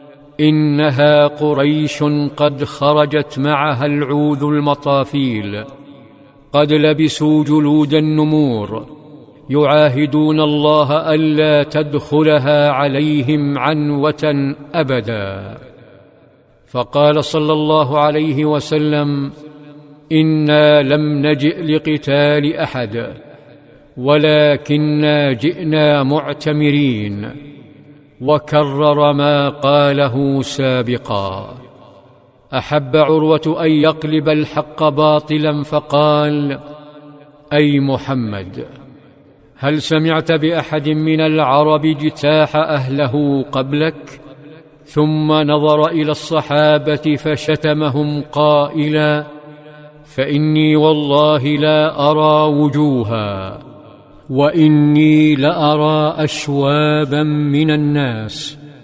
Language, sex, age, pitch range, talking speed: Arabic, male, 50-69, 145-150 Hz, 70 wpm